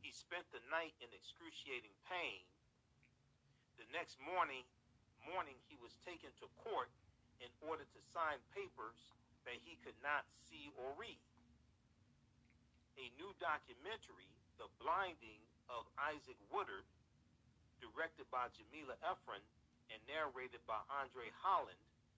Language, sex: English, male